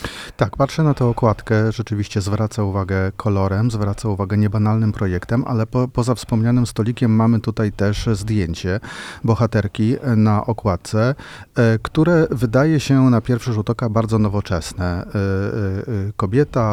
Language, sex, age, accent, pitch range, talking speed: Polish, male, 40-59, native, 105-120 Hz, 120 wpm